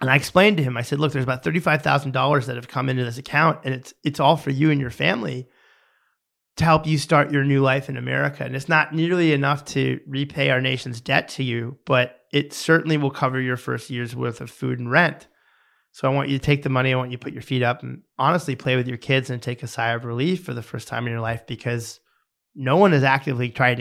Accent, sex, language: American, male, English